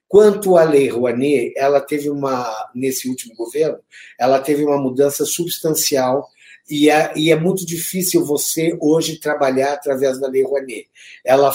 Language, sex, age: Portuguese, male, 50-69